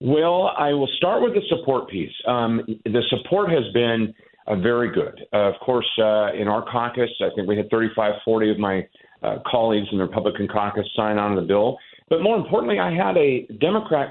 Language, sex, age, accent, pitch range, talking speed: English, male, 40-59, American, 100-125 Hz, 210 wpm